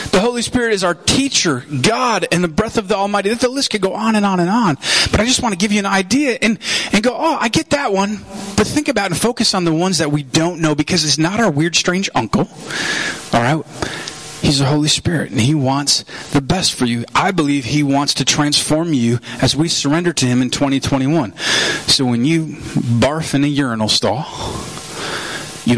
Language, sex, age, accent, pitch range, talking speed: English, male, 30-49, American, 135-215 Hz, 225 wpm